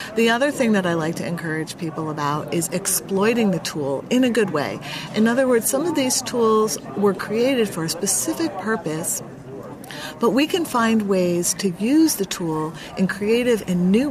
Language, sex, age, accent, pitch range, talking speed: French, female, 40-59, American, 170-225 Hz, 185 wpm